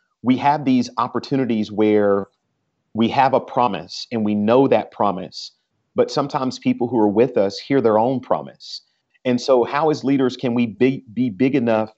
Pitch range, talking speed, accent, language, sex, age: 110-130 Hz, 175 wpm, American, English, male, 40-59